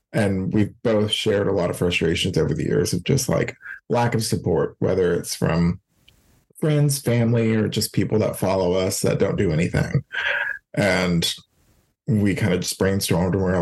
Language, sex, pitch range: English, male, 95-120 Hz